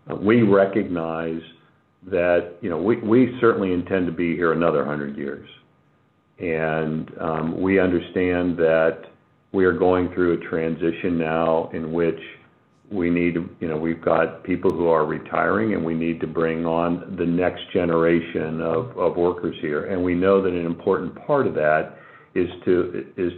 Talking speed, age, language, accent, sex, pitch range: 165 wpm, 50-69, English, American, male, 80-90 Hz